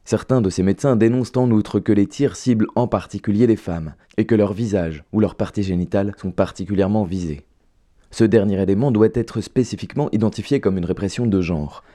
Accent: French